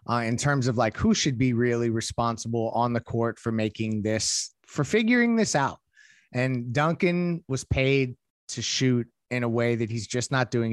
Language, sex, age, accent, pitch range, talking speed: English, male, 30-49, American, 115-135 Hz, 190 wpm